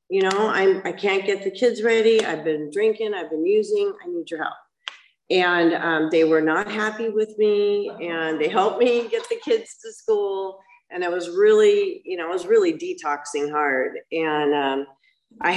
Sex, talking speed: female, 195 wpm